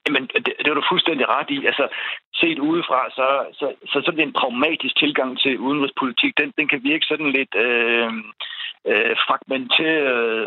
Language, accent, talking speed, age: Danish, native, 185 wpm, 60-79